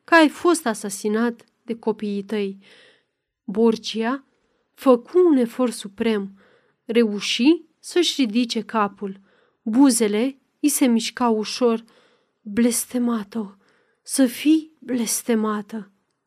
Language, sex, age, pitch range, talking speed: Romanian, female, 30-49, 215-275 Hz, 90 wpm